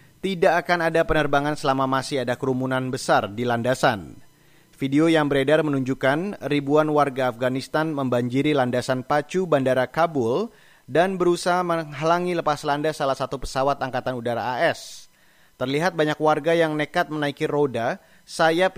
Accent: native